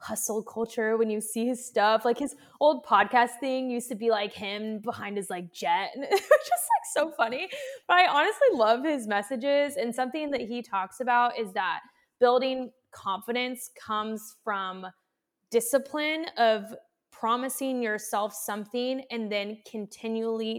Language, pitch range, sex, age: English, 205-270 Hz, female, 20-39